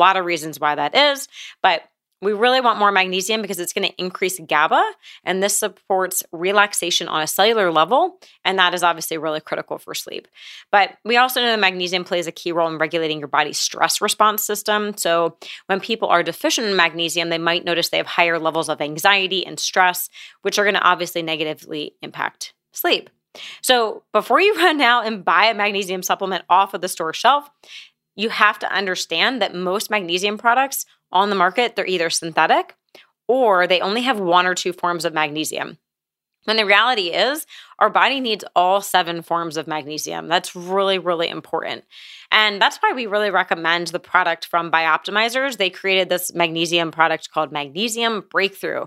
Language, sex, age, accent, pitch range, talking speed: English, female, 30-49, American, 170-215 Hz, 185 wpm